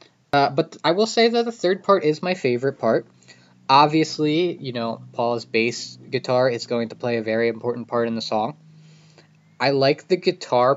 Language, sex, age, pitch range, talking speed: English, male, 20-39, 120-155 Hz, 190 wpm